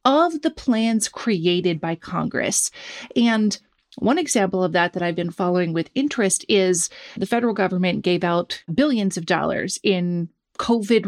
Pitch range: 190-255 Hz